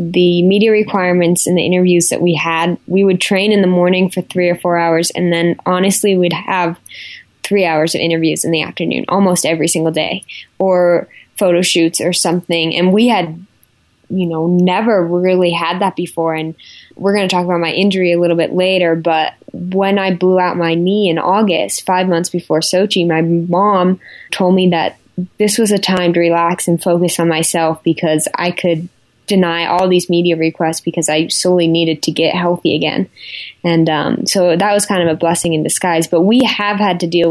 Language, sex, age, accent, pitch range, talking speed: English, female, 10-29, American, 165-185 Hz, 200 wpm